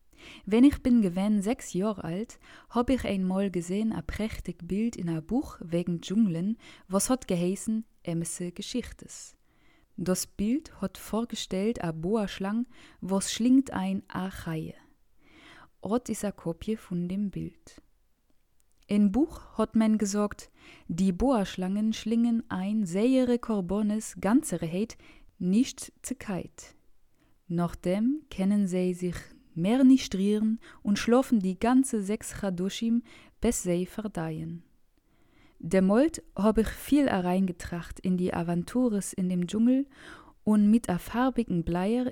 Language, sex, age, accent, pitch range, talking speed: German, female, 20-39, German, 185-235 Hz, 130 wpm